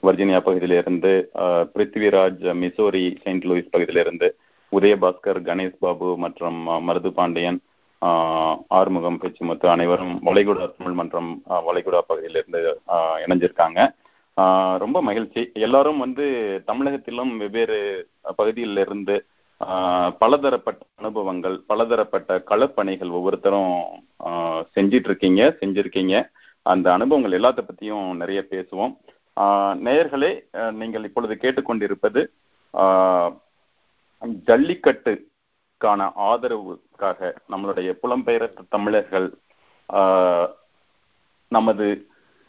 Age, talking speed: 30-49, 80 wpm